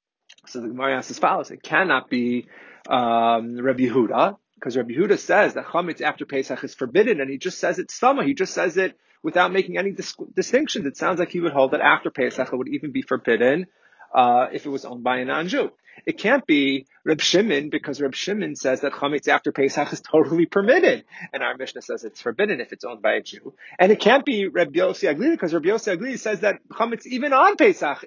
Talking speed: 215 wpm